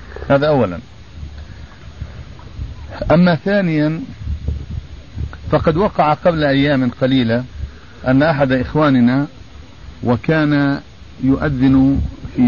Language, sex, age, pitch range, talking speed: Arabic, male, 50-69, 110-140 Hz, 70 wpm